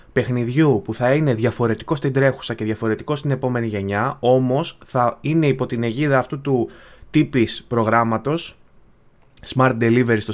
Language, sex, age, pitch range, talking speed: Greek, male, 20-39, 115-150 Hz, 145 wpm